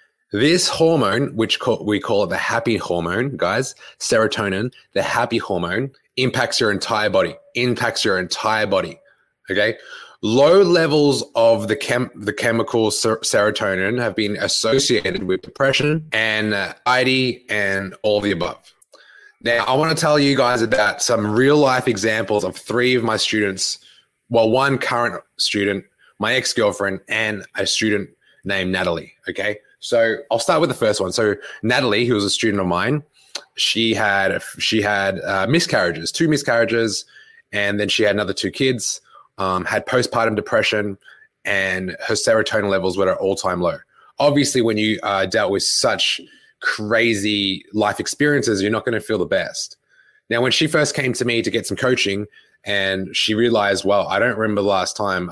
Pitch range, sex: 100-130 Hz, male